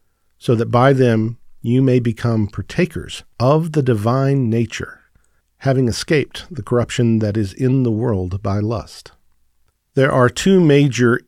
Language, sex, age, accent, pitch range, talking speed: English, male, 50-69, American, 110-140 Hz, 145 wpm